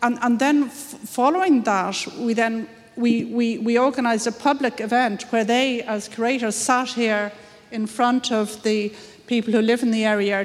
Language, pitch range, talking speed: English, 200-230 Hz, 165 wpm